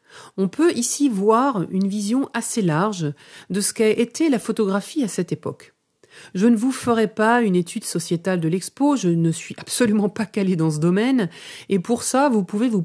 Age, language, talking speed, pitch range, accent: 40-59, French, 195 wpm, 170-230 Hz, French